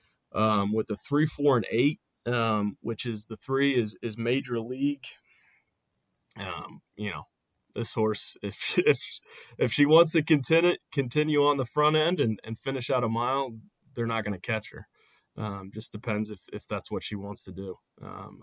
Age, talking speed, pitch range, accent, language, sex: 20-39, 180 wpm, 105-115 Hz, American, English, male